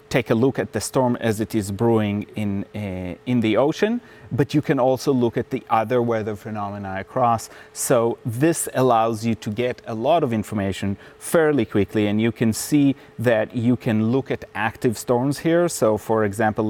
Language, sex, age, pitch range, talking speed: English, male, 30-49, 100-130 Hz, 190 wpm